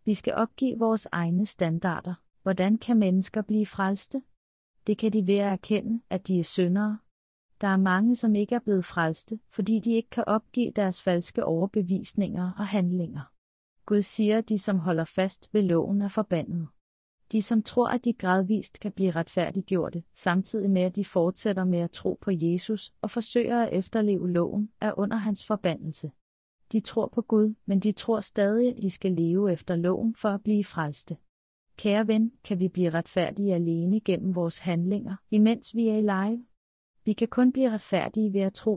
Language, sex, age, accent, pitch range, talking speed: Danish, female, 30-49, native, 180-215 Hz, 185 wpm